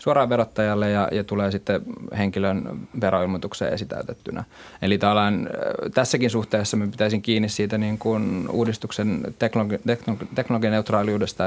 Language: Finnish